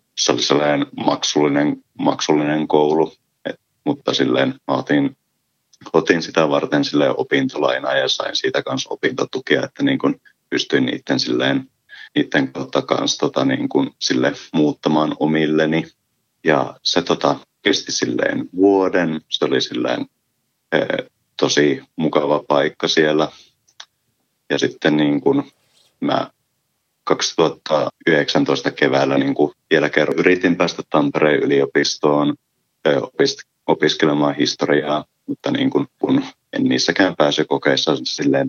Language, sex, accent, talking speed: Finnish, male, native, 110 wpm